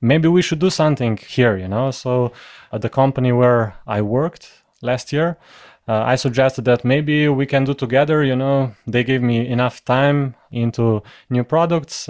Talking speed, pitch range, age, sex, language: 180 wpm, 115-140 Hz, 20-39, male, English